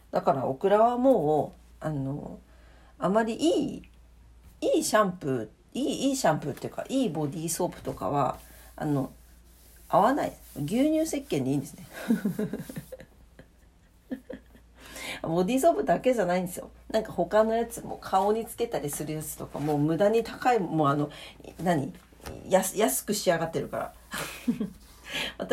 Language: Japanese